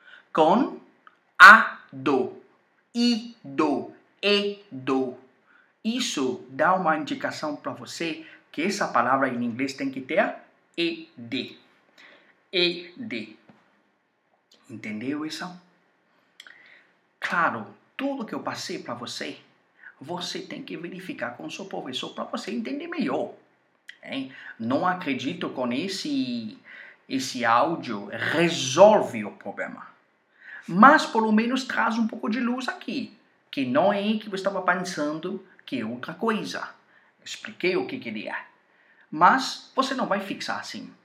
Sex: male